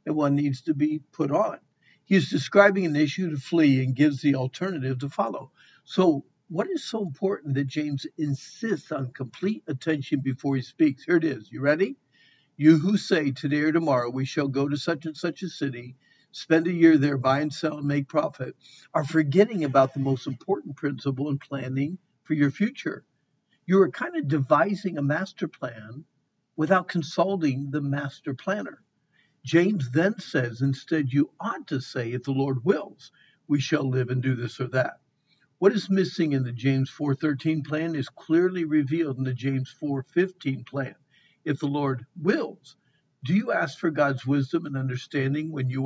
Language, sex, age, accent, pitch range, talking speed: English, male, 60-79, American, 135-175 Hz, 185 wpm